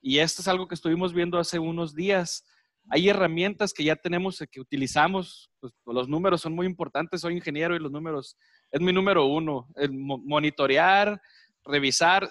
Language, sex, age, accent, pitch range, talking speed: Spanish, male, 30-49, Mexican, 155-190 Hz, 175 wpm